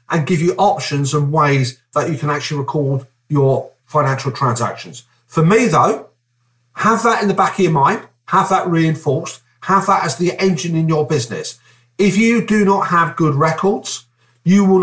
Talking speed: 180 wpm